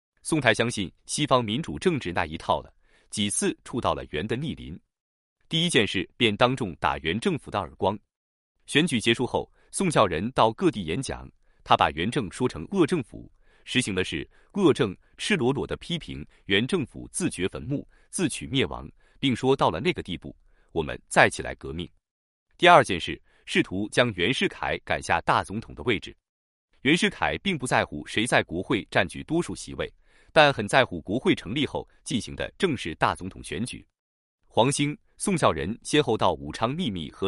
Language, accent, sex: Chinese, native, male